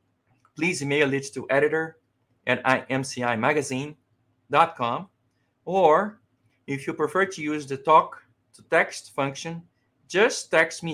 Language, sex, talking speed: English, male, 115 wpm